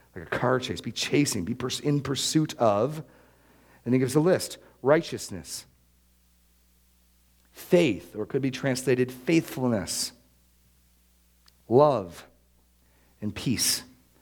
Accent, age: American, 40-59